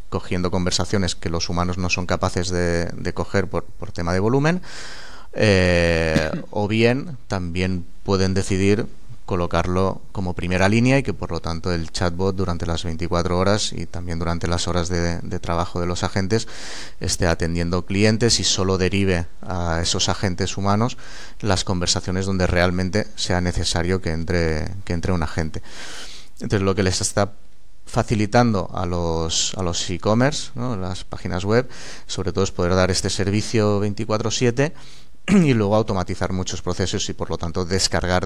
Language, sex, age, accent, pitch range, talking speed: Spanish, male, 30-49, Spanish, 90-100 Hz, 160 wpm